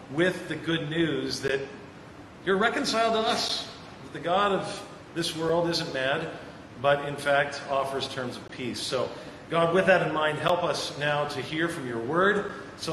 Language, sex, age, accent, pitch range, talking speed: English, male, 40-59, American, 140-180 Hz, 175 wpm